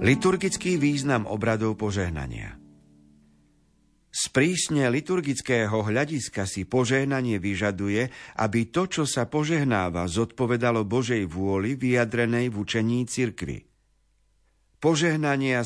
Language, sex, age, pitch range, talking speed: Slovak, male, 50-69, 100-130 Hz, 90 wpm